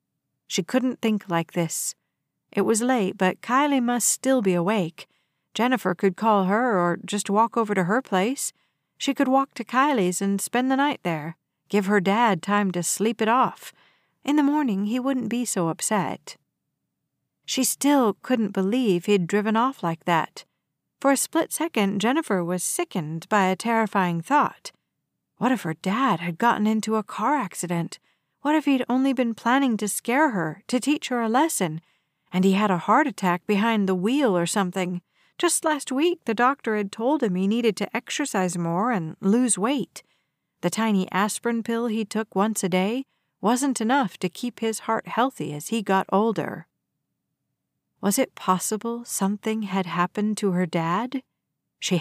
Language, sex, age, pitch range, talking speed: English, female, 50-69, 185-250 Hz, 175 wpm